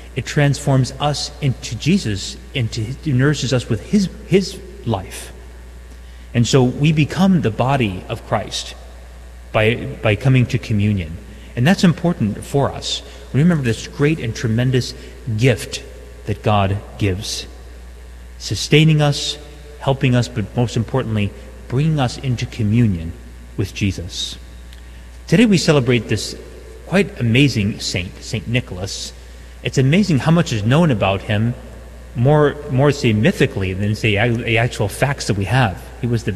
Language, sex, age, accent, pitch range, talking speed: English, male, 30-49, American, 95-135 Hz, 140 wpm